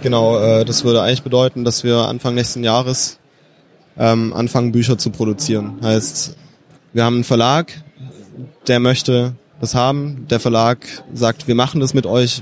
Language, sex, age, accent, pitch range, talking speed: German, male, 20-39, German, 115-135 Hz, 150 wpm